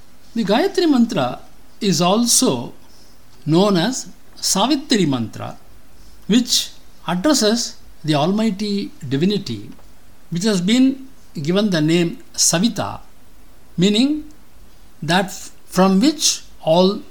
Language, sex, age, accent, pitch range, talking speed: English, male, 60-79, Indian, 125-200 Hz, 90 wpm